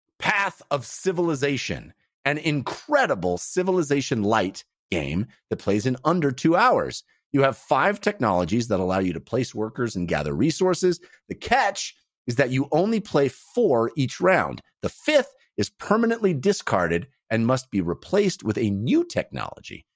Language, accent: English, American